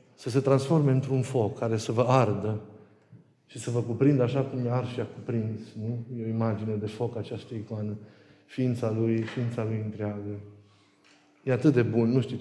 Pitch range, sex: 110-130 Hz, male